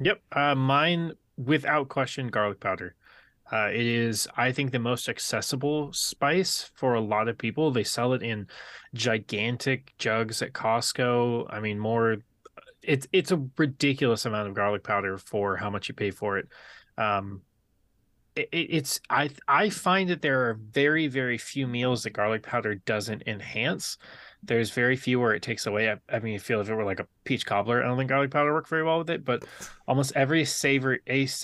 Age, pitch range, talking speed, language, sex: 20-39, 110-140 Hz, 185 wpm, English, male